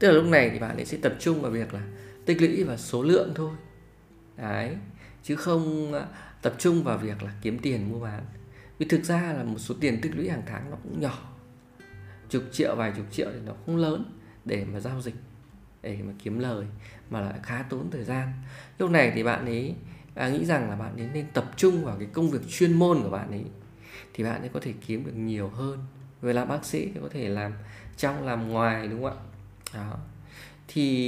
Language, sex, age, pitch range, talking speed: Vietnamese, male, 20-39, 105-140 Hz, 220 wpm